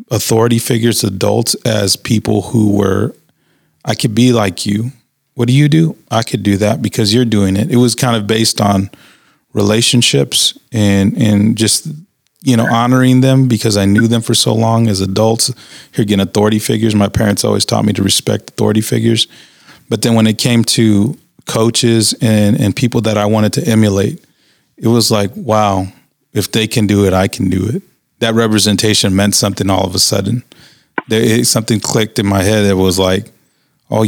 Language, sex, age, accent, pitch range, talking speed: English, male, 30-49, American, 100-120 Hz, 190 wpm